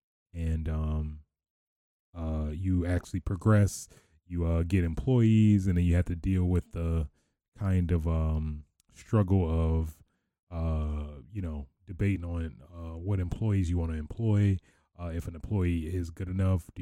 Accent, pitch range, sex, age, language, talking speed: American, 80-95 Hz, male, 20-39, English, 155 wpm